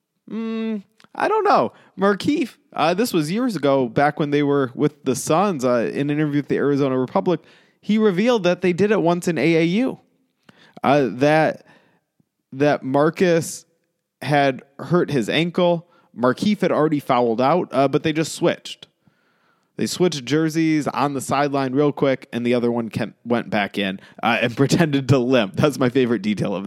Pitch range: 135-175 Hz